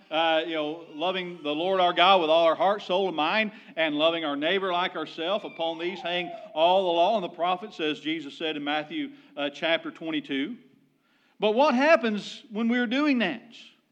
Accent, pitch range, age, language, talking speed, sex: American, 170-255 Hz, 40-59, English, 195 wpm, male